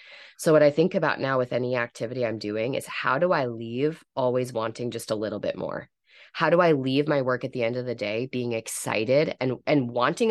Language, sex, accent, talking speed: English, female, American, 235 wpm